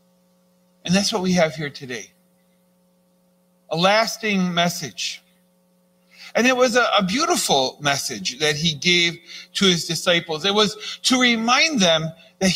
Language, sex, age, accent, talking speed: English, male, 40-59, American, 135 wpm